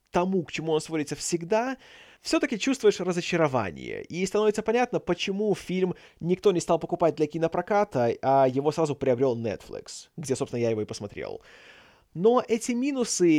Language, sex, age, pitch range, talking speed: Russian, male, 20-39, 155-220 Hz, 150 wpm